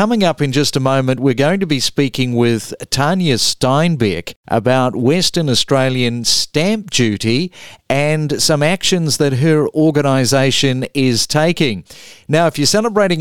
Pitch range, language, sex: 120-155 Hz, English, male